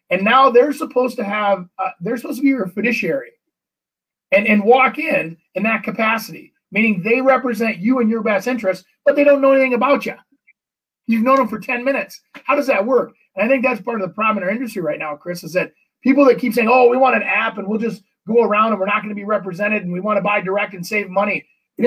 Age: 30-49